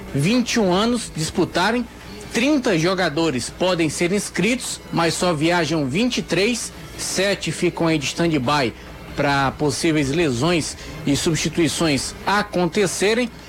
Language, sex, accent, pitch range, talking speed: Portuguese, male, Brazilian, 165-210 Hz, 100 wpm